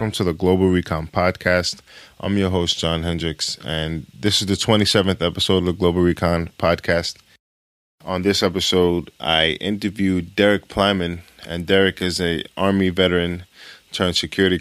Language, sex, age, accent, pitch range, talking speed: English, male, 20-39, American, 85-95 Hz, 150 wpm